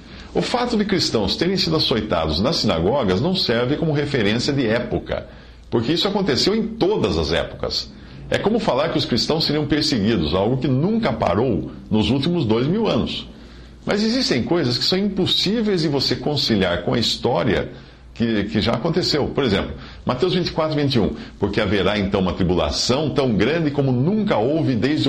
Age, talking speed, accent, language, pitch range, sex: 50-69, 170 wpm, Brazilian, Portuguese, 100-155 Hz, male